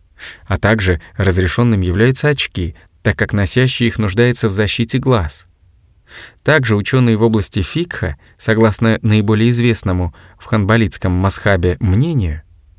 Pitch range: 90-120 Hz